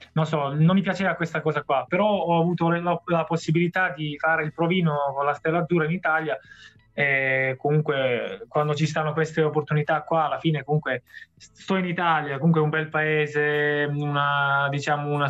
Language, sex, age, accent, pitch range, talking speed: Italian, male, 20-39, native, 145-170 Hz, 175 wpm